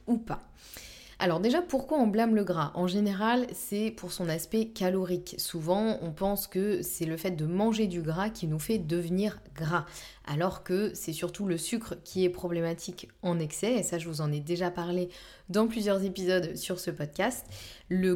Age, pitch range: 20-39, 165-205 Hz